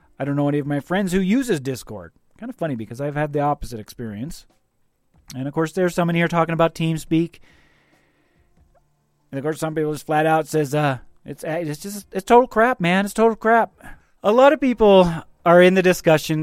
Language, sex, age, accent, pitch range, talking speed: English, male, 30-49, American, 145-185 Hz, 205 wpm